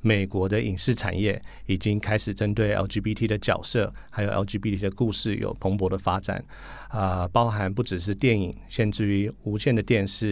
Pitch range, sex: 95-115 Hz, male